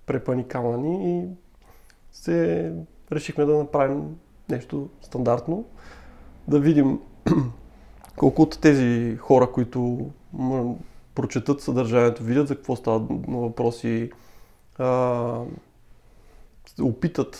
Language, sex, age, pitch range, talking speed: Bulgarian, male, 20-39, 115-145 Hz, 85 wpm